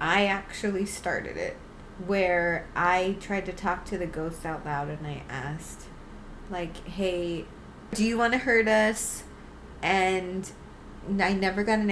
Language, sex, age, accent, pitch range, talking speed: English, female, 20-39, American, 175-205 Hz, 150 wpm